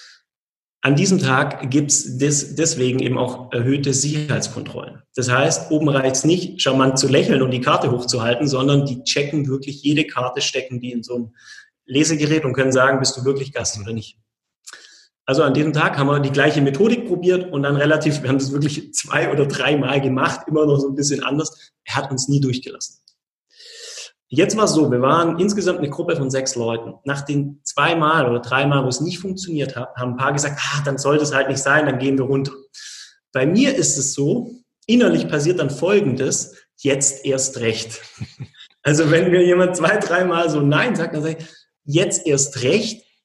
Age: 30-49